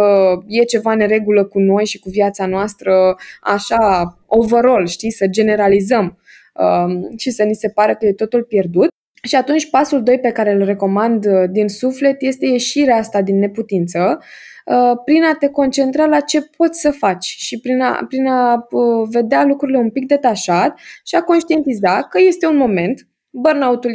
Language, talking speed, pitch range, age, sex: Romanian, 170 wpm, 200-275 Hz, 20-39, female